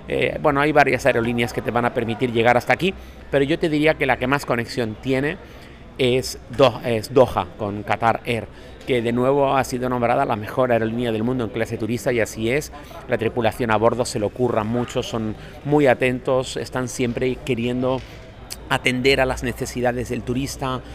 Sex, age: male, 30-49